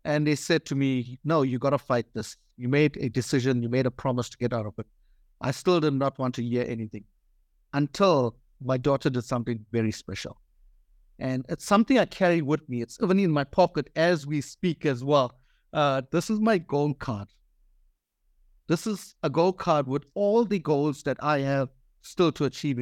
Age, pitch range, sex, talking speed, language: 50-69, 120-160 Hz, male, 200 wpm, English